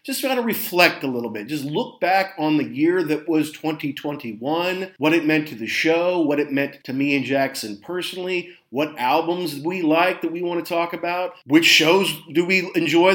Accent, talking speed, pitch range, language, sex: American, 200 wpm, 145-180 Hz, English, male